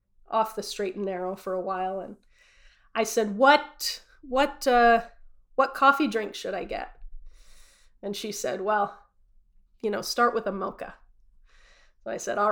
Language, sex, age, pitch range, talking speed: English, female, 20-39, 205-245 Hz, 165 wpm